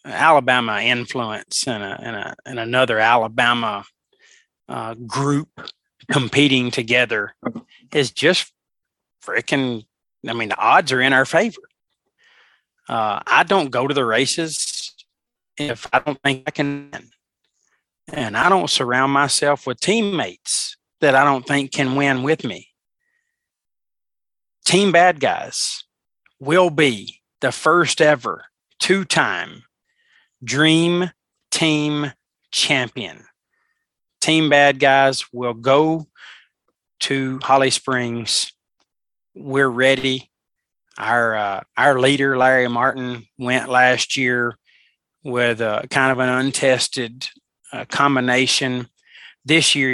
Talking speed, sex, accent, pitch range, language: 115 wpm, male, American, 125-150 Hz, English